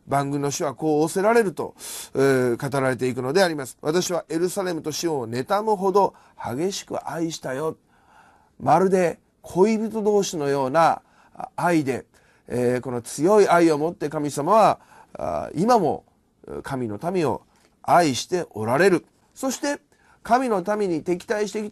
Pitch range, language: 145-205 Hz, Japanese